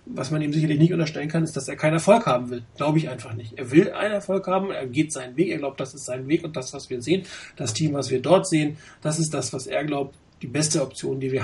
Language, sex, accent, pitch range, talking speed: German, male, German, 135-165 Hz, 290 wpm